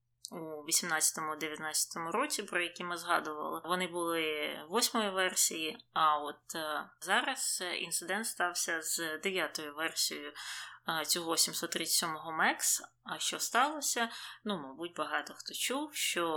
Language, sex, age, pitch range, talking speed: Ukrainian, female, 20-39, 160-205 Hz, 125 wpm